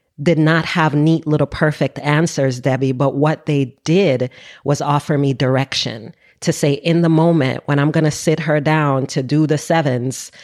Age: 40-59